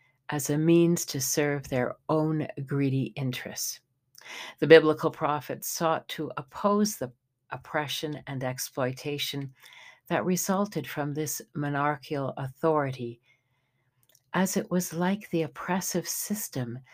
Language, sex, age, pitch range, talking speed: English, female, 60-79, 125-160 Hz, 115 wpm